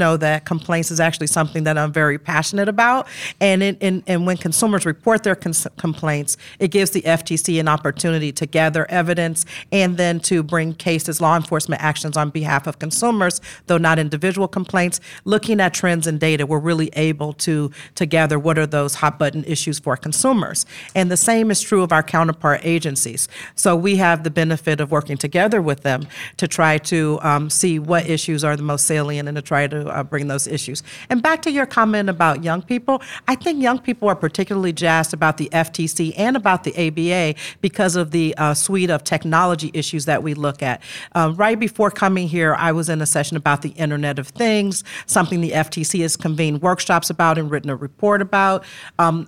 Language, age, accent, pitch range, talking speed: English, 40-59, American, 155-185 Hz, 200 wpm